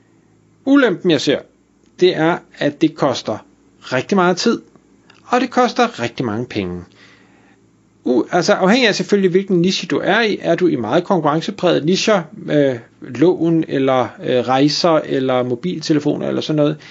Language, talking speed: Danish, 155 wpm